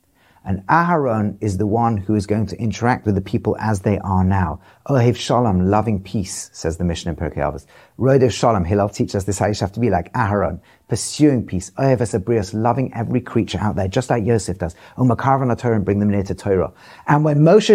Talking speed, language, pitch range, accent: 215 wpm, English, 105-155 Hz, British